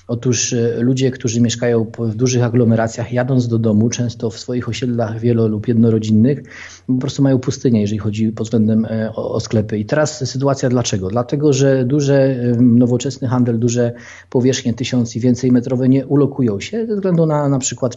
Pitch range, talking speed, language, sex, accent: 110-125 Hz, 165 wpm, Polish, male, native